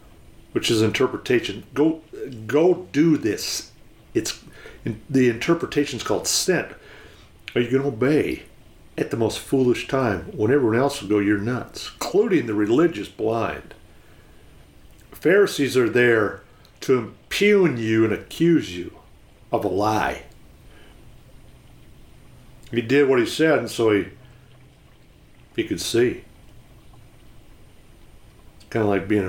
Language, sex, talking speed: English, male, 125 wpm